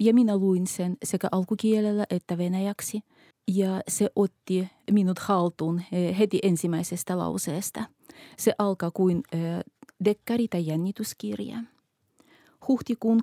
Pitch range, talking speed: 180-215 Hz, 110 wpm